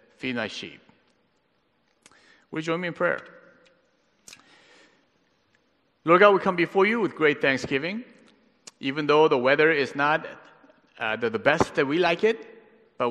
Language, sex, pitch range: Korean, male, 120-175 Hz